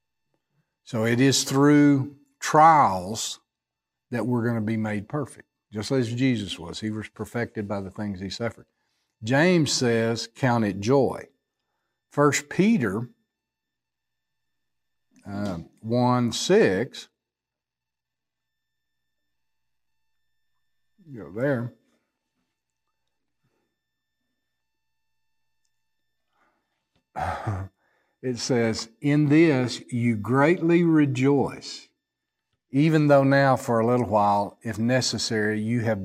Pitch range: 110-135 Hz